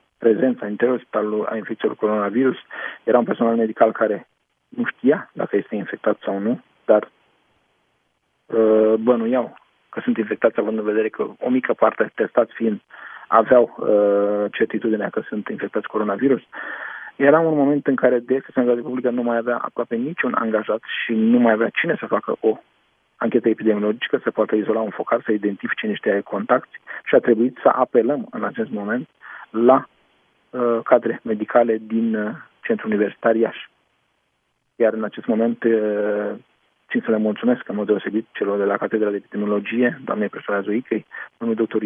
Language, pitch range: Romanian, 105-120 Hz